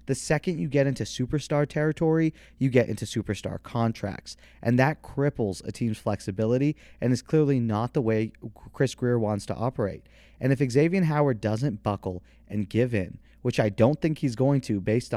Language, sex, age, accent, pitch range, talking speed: English, male, 30-49, American, 105-135 Hz, 180 wpm